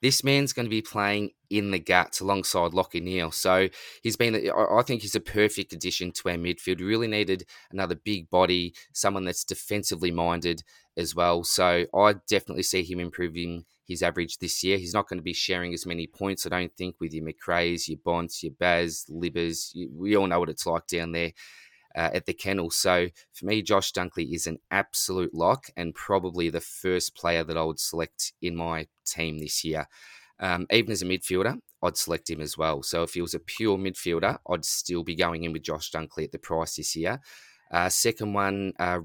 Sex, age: male, 20-39